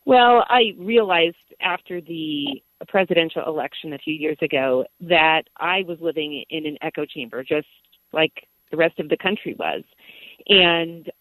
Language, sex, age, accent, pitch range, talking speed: English, female, 40-59, American, 165-230 Hz, 150 wpm